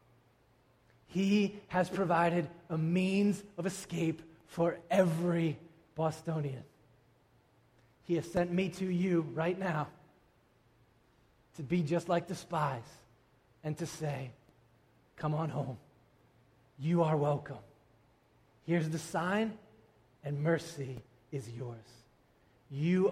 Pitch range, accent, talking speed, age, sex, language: 125-165 Hz, American, 105 wpm, 20-39, male, English